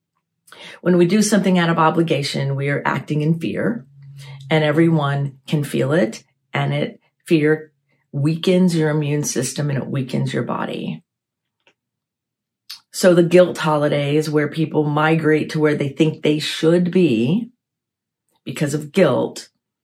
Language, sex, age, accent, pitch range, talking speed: English, female, 40-59, American, 140-170 Hz, 140 wpm